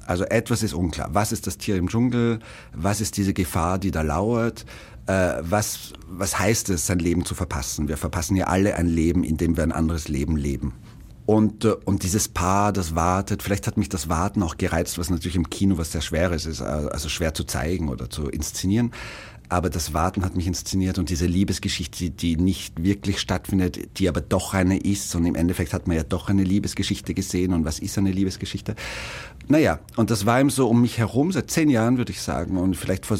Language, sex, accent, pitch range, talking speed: German, male, German, 90-110 Hz, 210 wpm